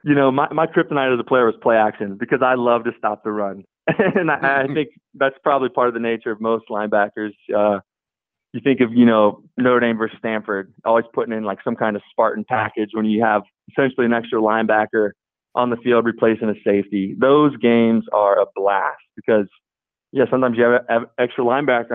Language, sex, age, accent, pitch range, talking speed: English, male, 20-39, American, 110-135 Hz, 210 wpm